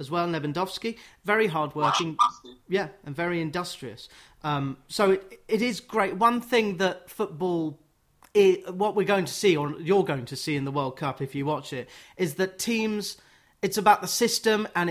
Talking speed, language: 190 wpm, English